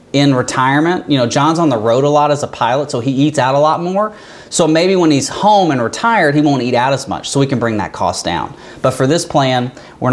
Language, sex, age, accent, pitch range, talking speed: English, male, 30-49, American, 120-150 Hz, 265 wpm